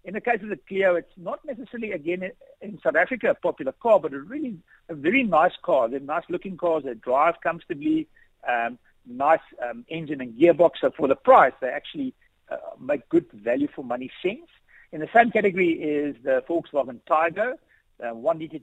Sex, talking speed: male, 180 wpm